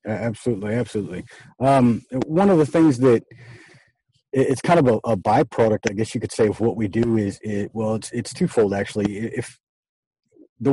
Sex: male